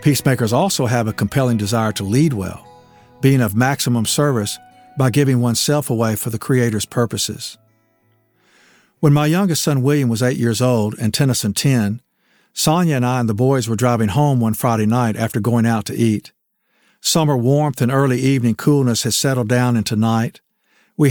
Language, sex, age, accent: English, male, 50-69, American